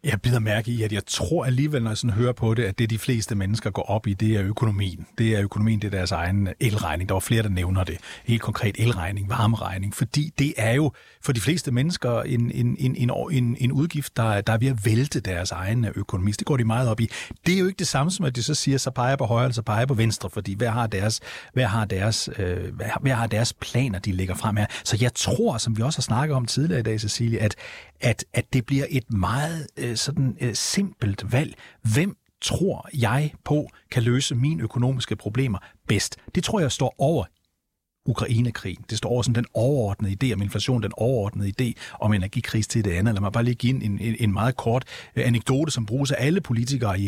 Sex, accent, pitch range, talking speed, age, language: male, native, 105-130 Hz, 235 wpm, 40-59, Danish